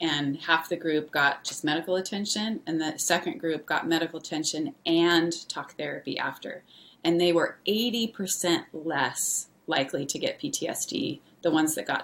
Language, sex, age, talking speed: English, female, 30-49, 160 wpm